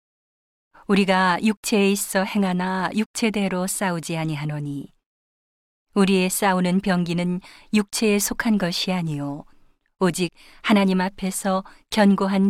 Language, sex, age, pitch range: Korean, female, 40-59, 175-205 Hz